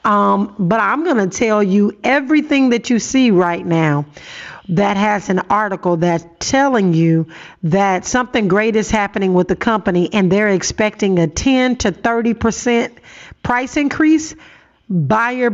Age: 50-69